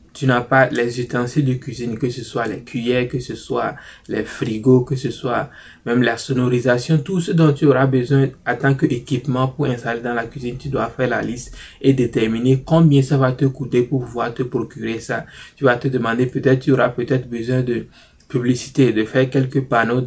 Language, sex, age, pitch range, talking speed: French, male, 20-39, 120-140 Hz, 205 wpm